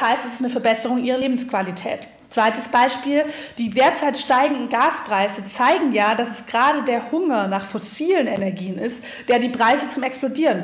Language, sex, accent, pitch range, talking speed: German, female, German, 220-270 Hz, 165 wpm